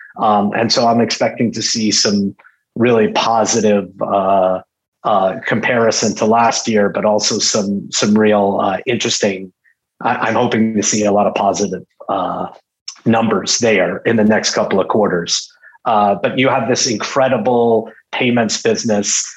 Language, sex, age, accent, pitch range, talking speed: English, male, 30-49, American, 105-125 Hz, 150 wpm